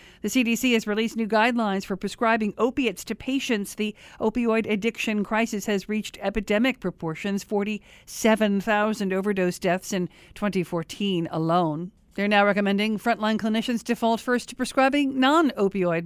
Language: English